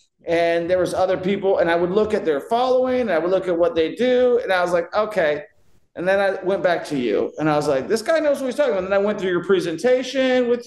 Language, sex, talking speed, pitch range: English, male, 285 wpm, 160-215 Hz